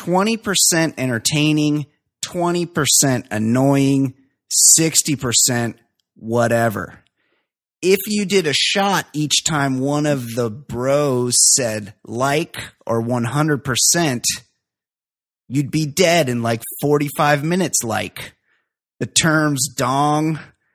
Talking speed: 90 wpm